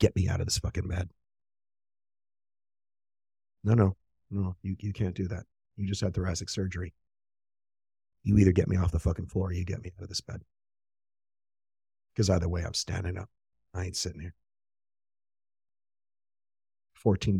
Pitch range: 95-100 Hz